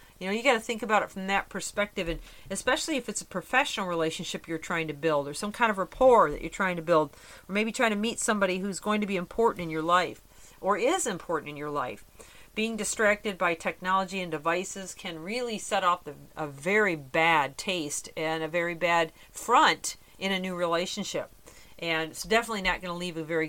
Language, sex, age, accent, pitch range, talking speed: English, female, 40-59, American, 160-200 Hz, 215 wpm